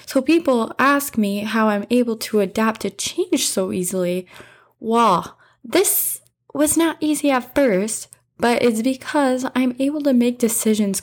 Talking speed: 150 wpm